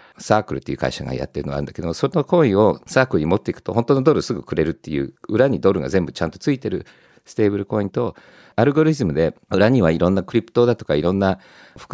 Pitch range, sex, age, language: 95-130 Hz, male, 50-69, Japanese